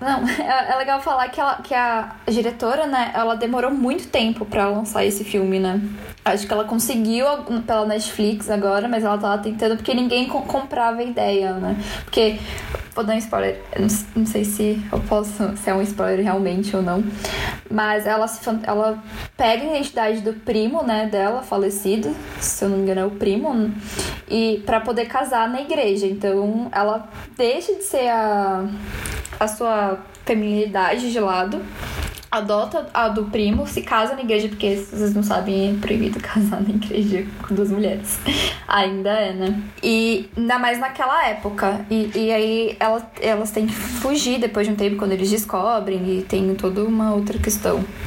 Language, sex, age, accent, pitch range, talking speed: Portuguese, female, 10-29, Brazilian, 205-250 Hz, 175 wpm